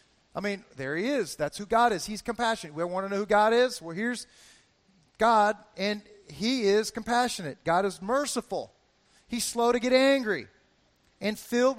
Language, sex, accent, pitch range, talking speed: English, male, American, 195-245 Hz, 180 wpm